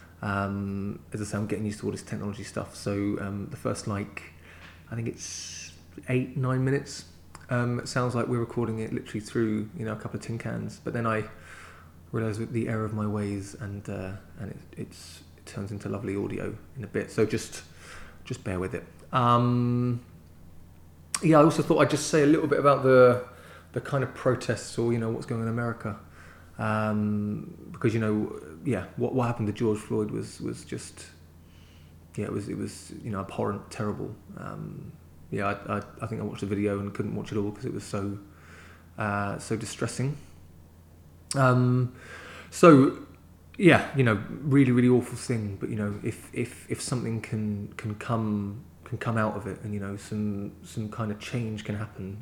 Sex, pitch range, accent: male, 90-115 Hz, British